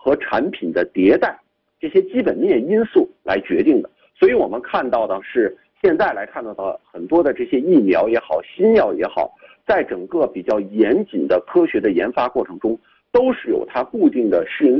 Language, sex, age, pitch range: Chinese, male, 50-69, 290-375 Hz